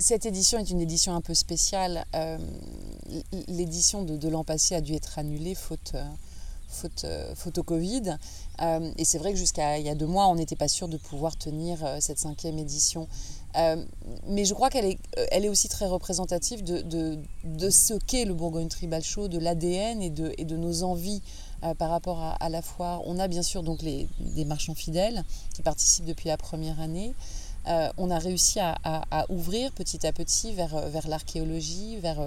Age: 30-49